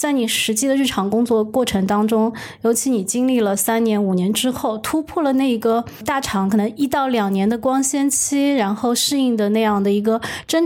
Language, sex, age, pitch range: Chinese, female, 20-39, 215-265 Hz